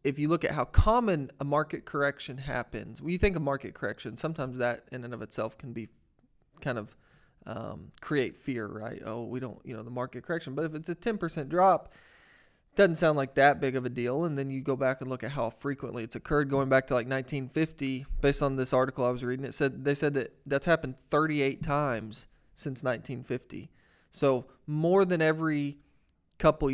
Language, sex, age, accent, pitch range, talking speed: English, male, 20-39, American, 130-155 Hz, 205 wpm